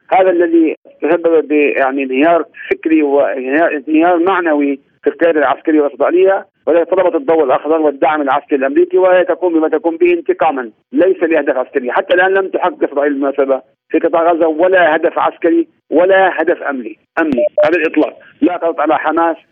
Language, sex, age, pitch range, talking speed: Arabic, male, 50-69, 150-185 Hz, 155 wpm